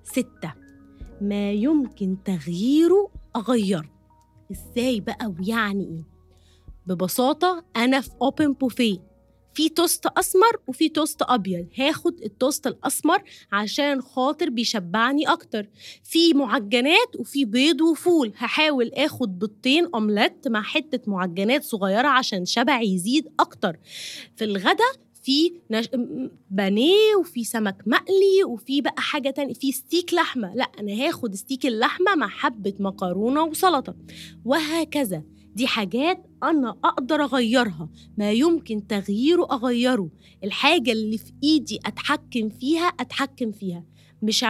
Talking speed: 115 wpm